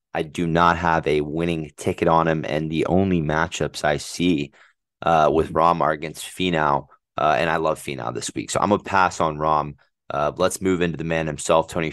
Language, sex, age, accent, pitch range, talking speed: English, male, 20-39, American, 75-85 Hz, 210 wpm